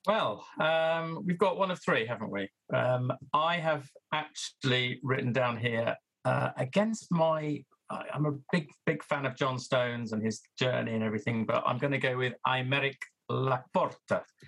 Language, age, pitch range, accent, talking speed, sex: English, 40-59, 120-145 Hz, British, 165 wpm, male